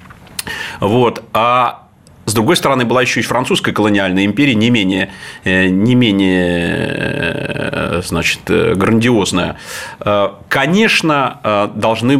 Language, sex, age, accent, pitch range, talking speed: Russian, male, 40-59, native, 100-125 Hz, 80 wpm